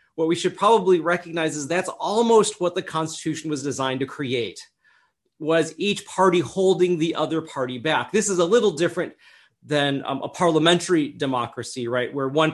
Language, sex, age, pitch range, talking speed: English, male, 30-49, 135-180 Hz, 170 wpm